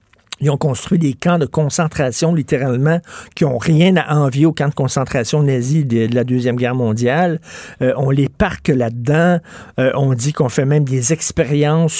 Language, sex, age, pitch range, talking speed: French, male, 50-69, 135-170 Hz, 180 wpm